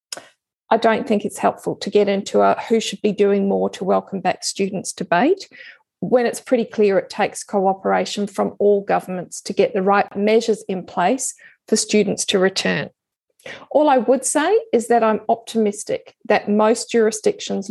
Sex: female